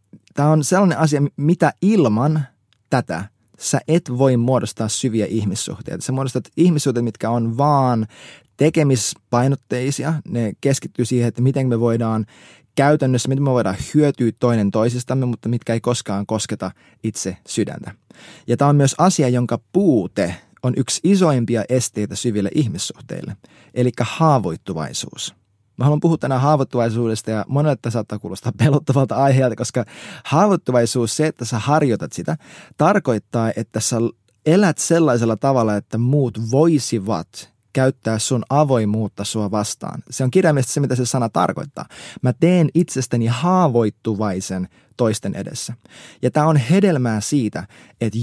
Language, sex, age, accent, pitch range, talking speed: Finnish, male, 20-39, native, 110-145 Hz, 135 wpm